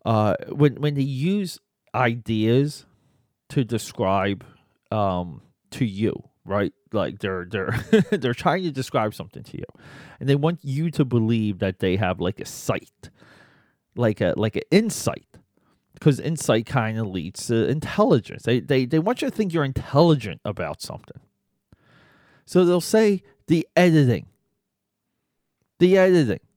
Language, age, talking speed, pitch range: English, 30-49, 145 wpm, 115-165 Hz